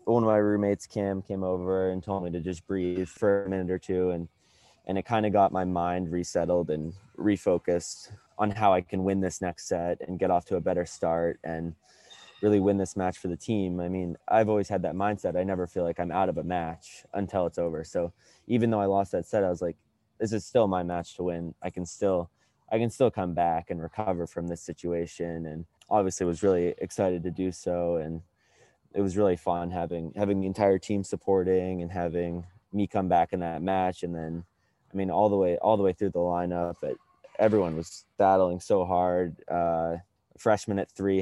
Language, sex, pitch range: English, male, 85-100 Hz